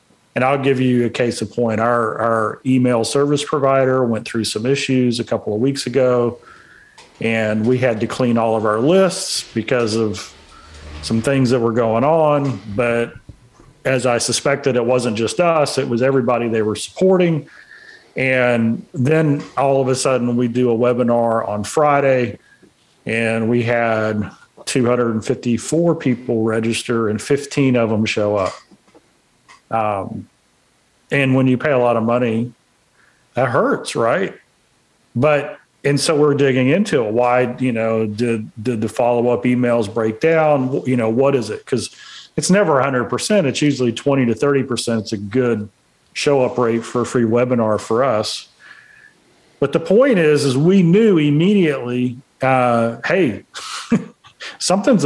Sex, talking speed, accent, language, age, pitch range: male, 155 wpm, American, English, 40-59, 115-140 Hz